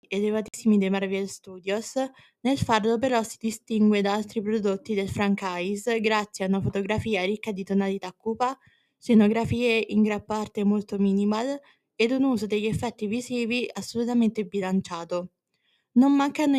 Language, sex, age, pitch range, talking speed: Italian, female, 20-39, 195-225 Hz, 135 wpm